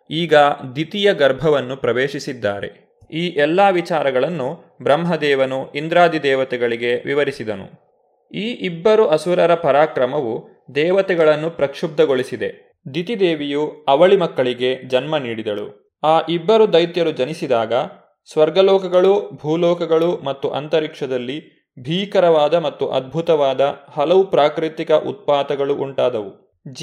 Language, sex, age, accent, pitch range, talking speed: Kannada, male, 20-39, native, 140-180 Hz, 85 wpm